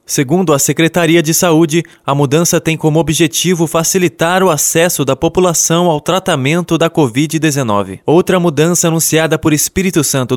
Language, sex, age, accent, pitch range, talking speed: Portuguese, male, 20-39, Brazilian, 145-170 Hz, 145 wpm